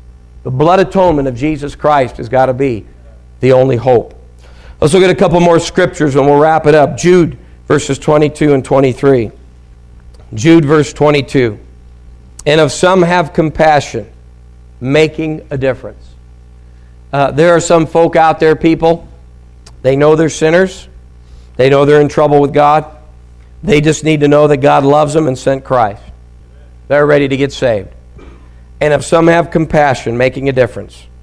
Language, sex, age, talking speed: English, male, 50-69, 165 wpm